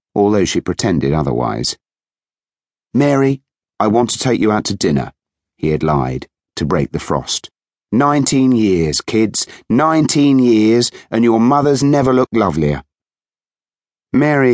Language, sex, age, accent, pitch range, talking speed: English, male, 40-59, British, 75-105 Hz, 130 wpm